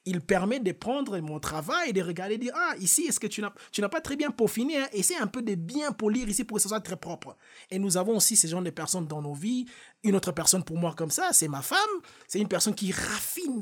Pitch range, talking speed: 160-215 Hz, 285 wpm